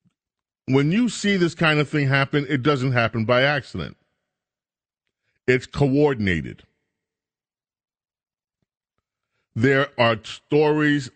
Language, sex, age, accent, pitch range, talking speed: English, male, 40-59, American, 105-135 Hz, 95 wpm